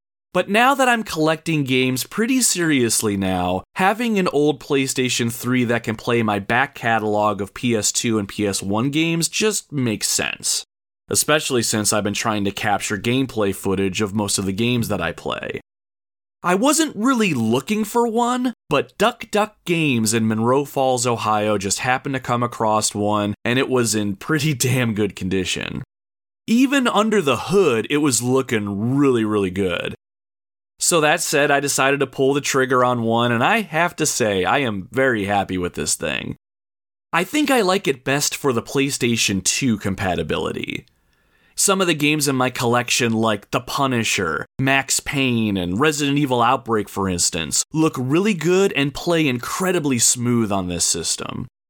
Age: 30-49